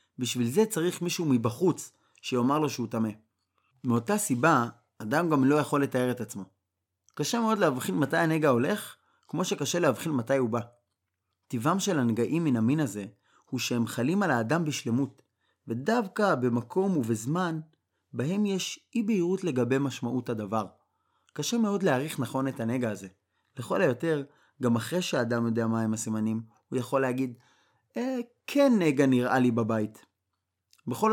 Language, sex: Hebrew, male